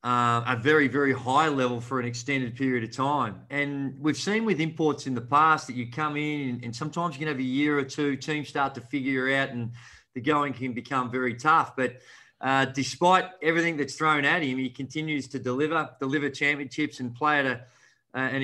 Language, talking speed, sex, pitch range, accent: English, 215 wpm, male, 130-155 Hz, Australian